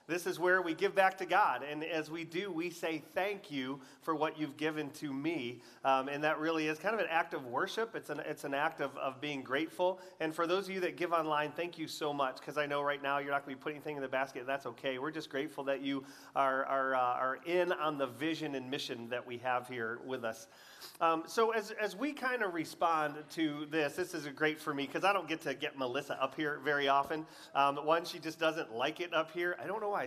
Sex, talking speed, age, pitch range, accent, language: male, 265 wpm, 30-49, 140-175 Hz, American, English